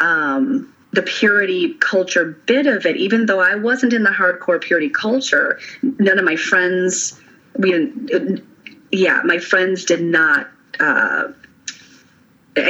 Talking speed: 130 wpm